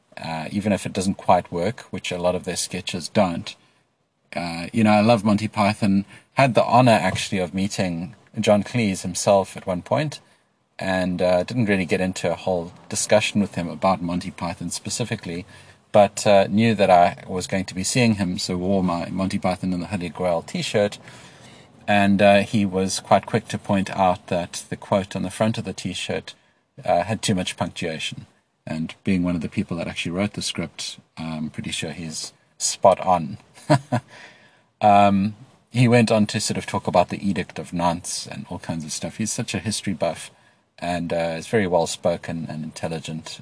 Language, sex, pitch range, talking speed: English, male, 85-105 Hz, 190 wpm